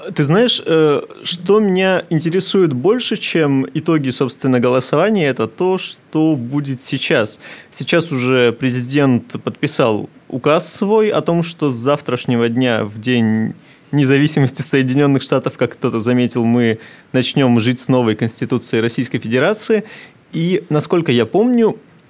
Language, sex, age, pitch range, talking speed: Russian, male, 20-39, 125-155 Hz, 130 wpm